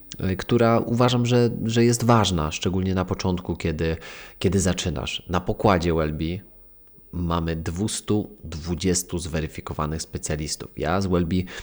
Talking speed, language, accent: 115 wpm, Polish, native